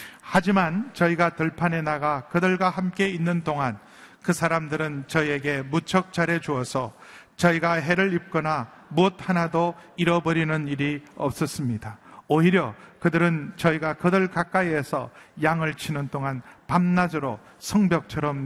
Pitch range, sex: 150-200 Hz, male